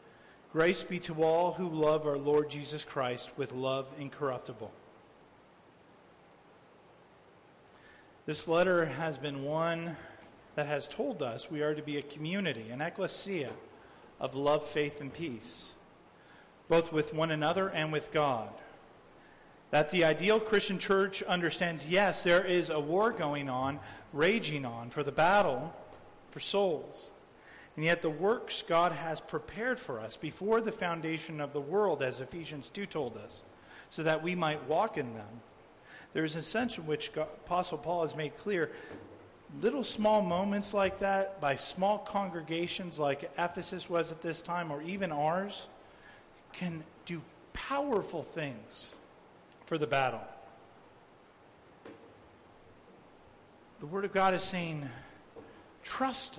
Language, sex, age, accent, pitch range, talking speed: English, male, 40-59, American, 150-185 Hz, 140 wpm